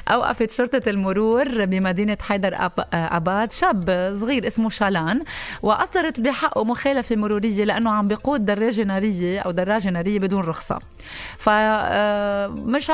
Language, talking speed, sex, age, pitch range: English, 120 wpm, female, 30-49, 190-240 Hz